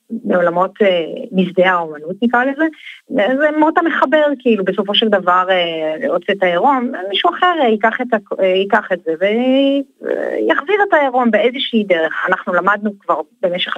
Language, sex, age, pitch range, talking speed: Hebrew, female, 30-49, 175-235 Hz, 135 wpm